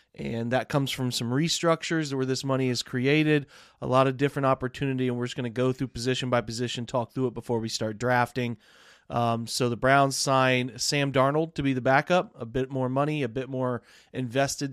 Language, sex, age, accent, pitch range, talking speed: English, male, 30-49, American, 125-145 Hz, 210 wpm